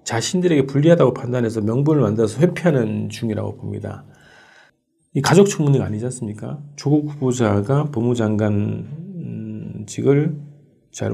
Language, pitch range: Korean, 105-135 Hz